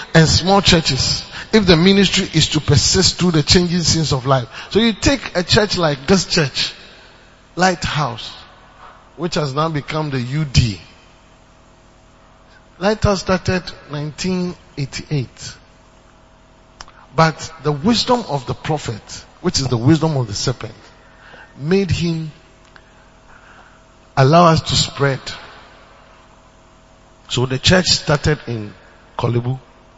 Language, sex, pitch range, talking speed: English, male, 130-195 Hz, 115 wpm